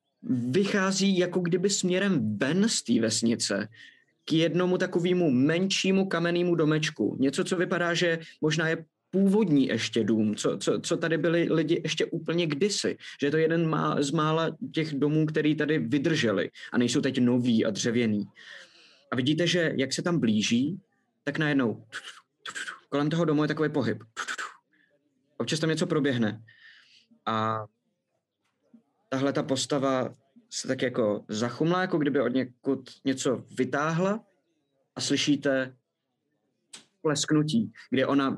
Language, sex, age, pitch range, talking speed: Czech, male, 20-39, 135-180 Hz, 135 wpm